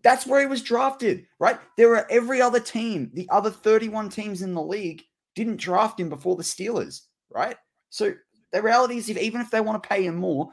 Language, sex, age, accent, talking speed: English, male, 20-39, Australian, 215 wpm